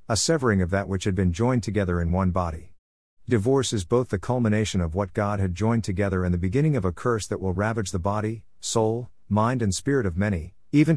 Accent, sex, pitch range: American, male, 90-115 Hz